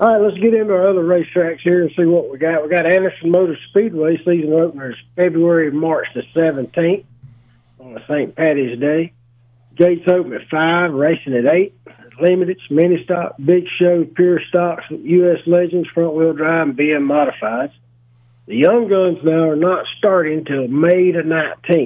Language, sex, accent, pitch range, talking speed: English, male, American, 140-175 Hz, 165 wpm